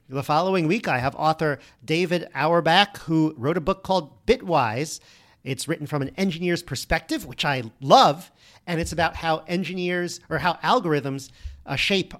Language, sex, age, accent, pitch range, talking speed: English, male, 40-59, American, 135-175 Hz, 160 wpm